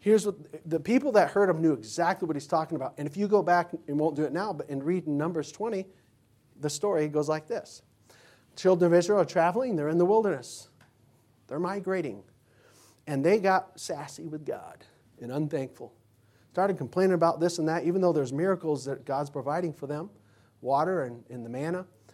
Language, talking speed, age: English, 195 wpm, 40-59